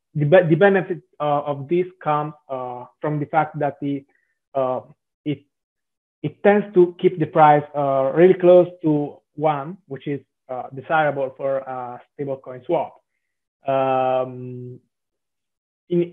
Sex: male